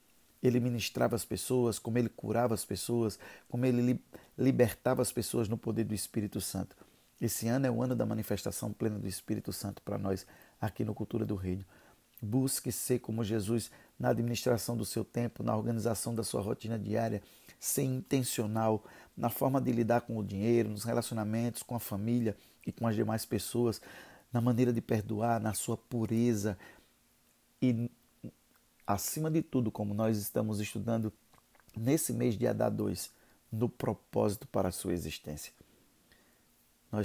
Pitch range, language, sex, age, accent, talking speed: 105-120 Hz, Portuguese, male, 50-69, Brazilian, 155 wpm